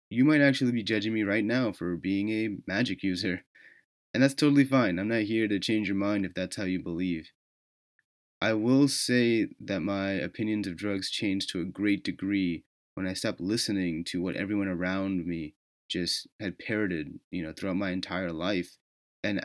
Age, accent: 30-49, American